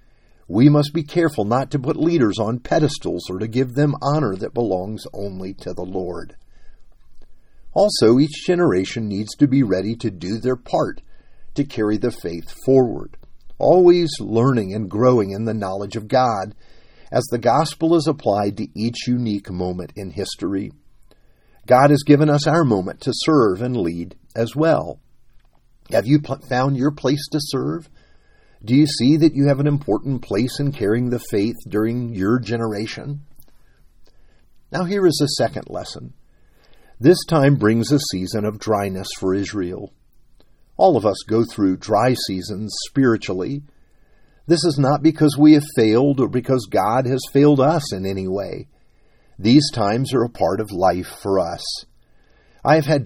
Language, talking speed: English, 160 wpm